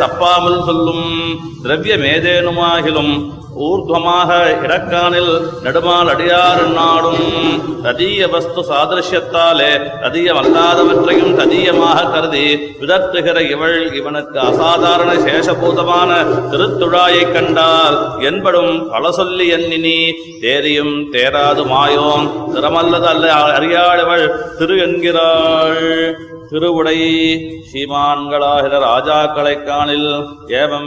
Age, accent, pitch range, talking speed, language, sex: 30-49, native, 150-175 Hz, 70 wpm, Tamil, male